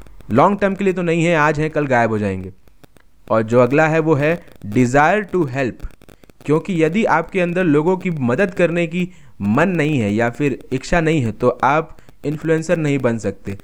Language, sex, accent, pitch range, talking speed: Hindi, male, native, 135-165 Hz, 200 wpm